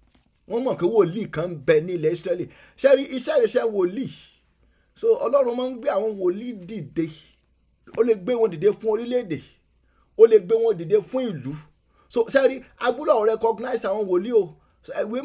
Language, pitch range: English, 195-265 Hz